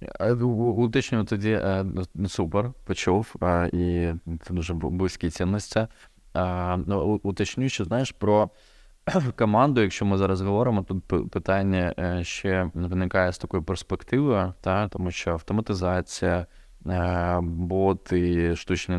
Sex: male